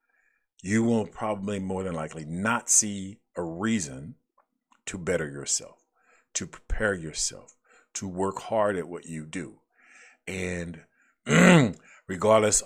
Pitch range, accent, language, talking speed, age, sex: 80-95 Hz, American, English, 120 wpm, 50-69, male